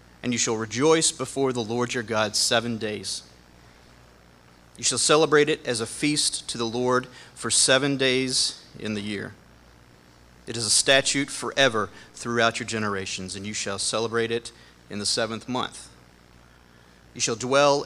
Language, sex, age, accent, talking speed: English, male, 40-59, American, 160 wpm